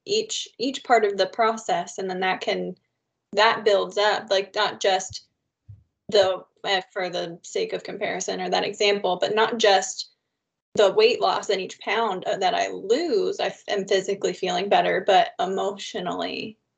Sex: female